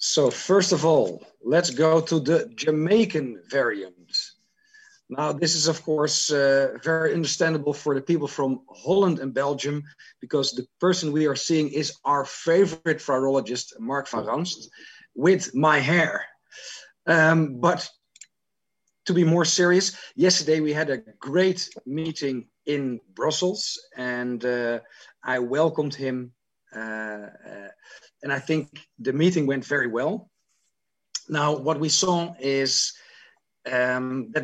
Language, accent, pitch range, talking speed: Dutch, Dutch, 135-165 Hz, 130 wpm